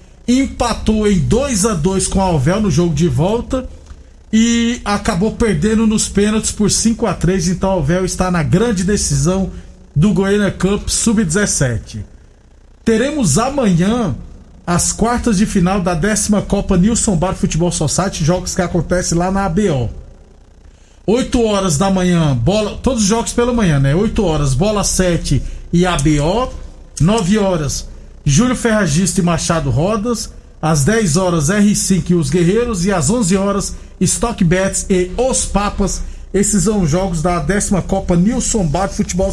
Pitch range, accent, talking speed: 170-210 Hz, Brazilian, 150 wpm